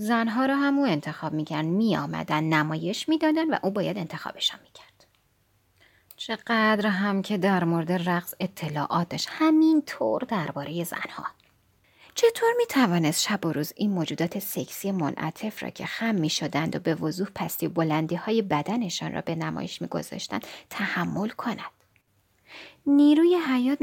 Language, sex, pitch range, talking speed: Persian, female, 155-240 Hz, 135 wpm